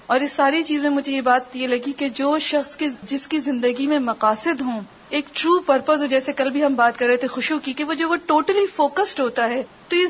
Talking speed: 250 wpm